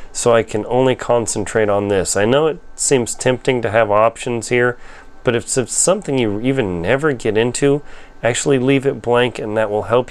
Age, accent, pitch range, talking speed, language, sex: 30-49, American, 115-145 Hz, 195 wpm, English, male